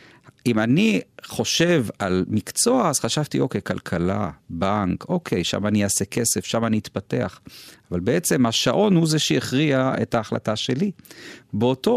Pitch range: 115-165 Hz